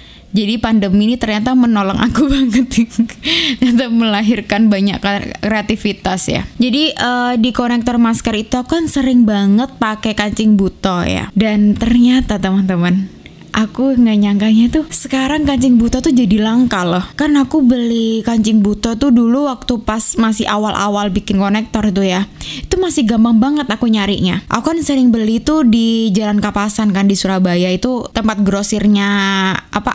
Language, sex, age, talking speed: Indonesian, female, 10-29, 150 wpm